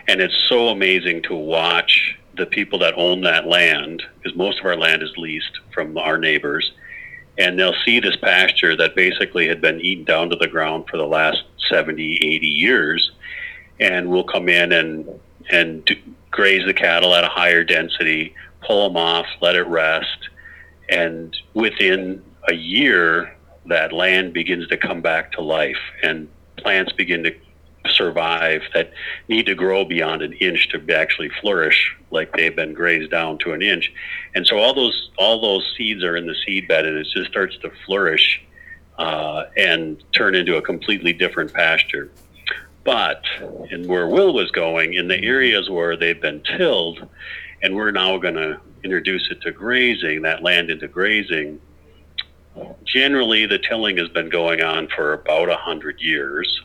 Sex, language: male, English